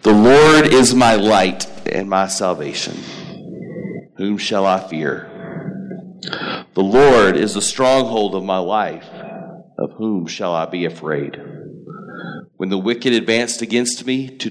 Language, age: English, 40-59